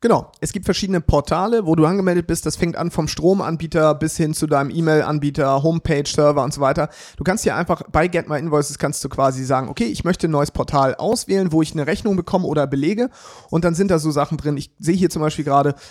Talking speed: 225 wpm